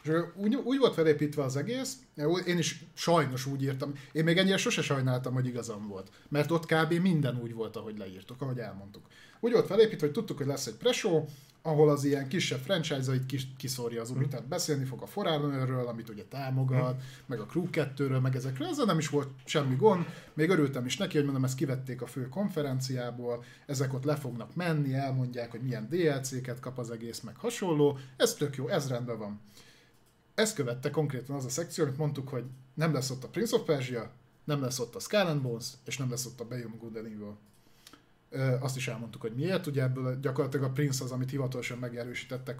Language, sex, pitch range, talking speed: Hungarian, male, 125-155 Hz, 195 wpm